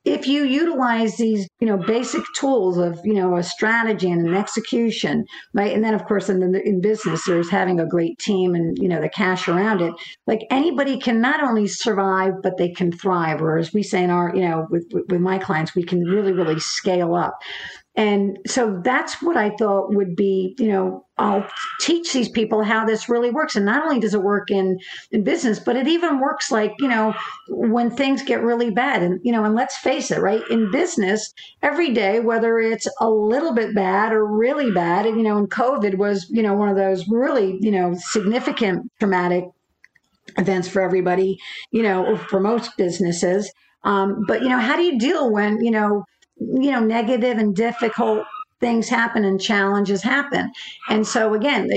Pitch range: 190-235 Hz